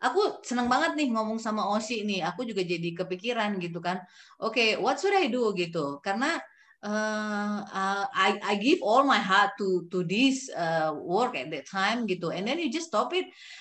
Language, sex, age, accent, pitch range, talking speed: Indonesian, female, 20-39, native, 170-225 Hz, 205 wpm